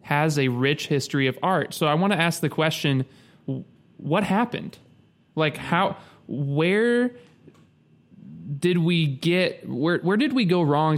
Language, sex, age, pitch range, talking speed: English, male, 20-39, 135-180 Hz, 150 wpm